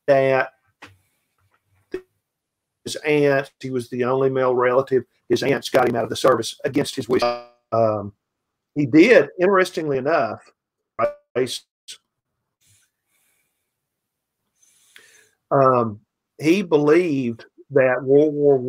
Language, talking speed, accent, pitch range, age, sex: English, 100 wpm, American, 120-145 Hz, 50-69, male